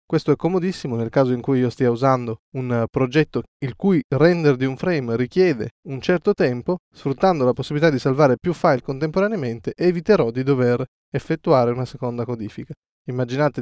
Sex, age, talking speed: male, 20-39, 165 wpm